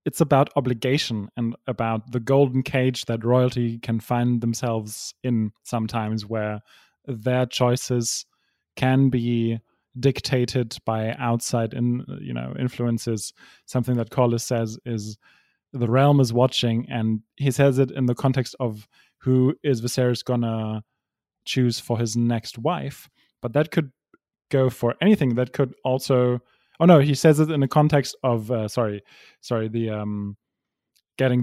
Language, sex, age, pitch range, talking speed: English, male, 20-39, 115-135 Hz, 150 wpm